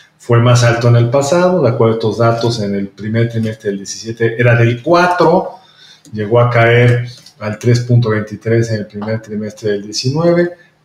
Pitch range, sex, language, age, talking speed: 115-140 Hz, male, Spanish, 40-59, 170 wpm